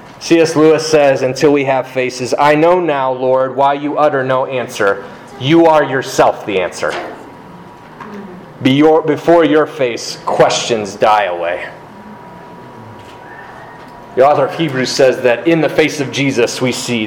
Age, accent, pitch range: 30-49, American, 110-145 Hz